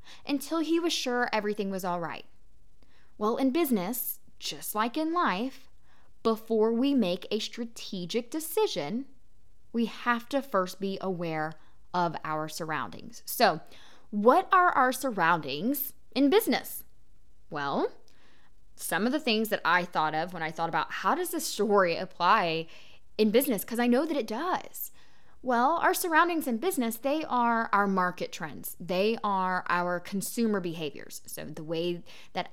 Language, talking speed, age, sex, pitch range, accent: English, 150 wpm, 10-29, female, 180-255 Hz, American